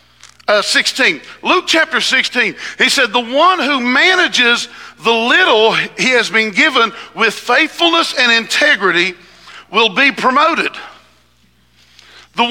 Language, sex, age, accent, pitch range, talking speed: English, male, 50-69, American, 215-285 Hz, 120 wpm